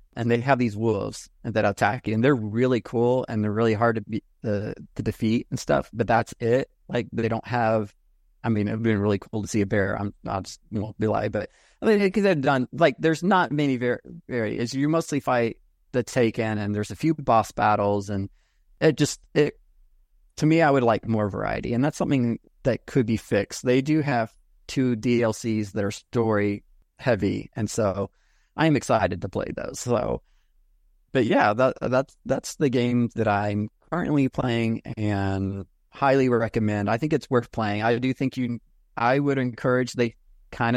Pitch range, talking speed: 105-130 Hz, 200 wpm